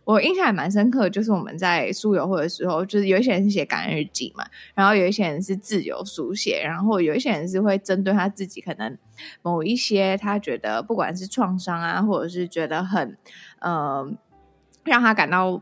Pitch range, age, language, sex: 180-220 Hz, 20-39, Chinese, female